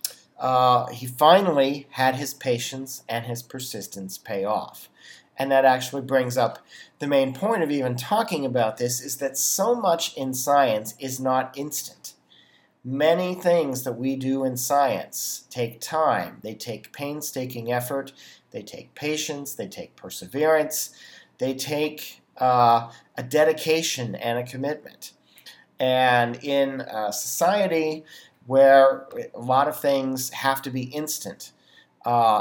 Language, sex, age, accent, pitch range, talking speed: English, male, 40-59, American, 120-140 Hz, 135 wpm